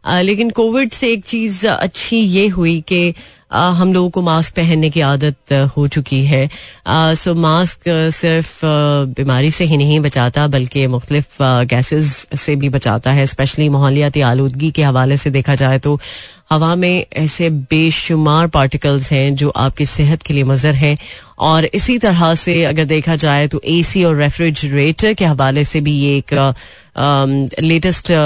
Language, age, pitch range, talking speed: Hindi, 30-49, 140-165 Hz, 160 wpm